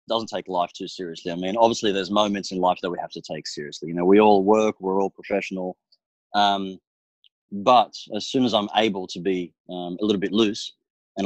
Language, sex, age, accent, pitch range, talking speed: English, male, 30-49, Australian, 95-110 Hz, 220 wpm